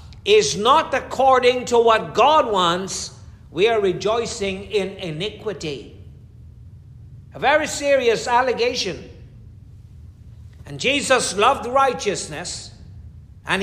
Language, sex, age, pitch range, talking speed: English, male, 60-79, 170-235 Hz, 95 wpm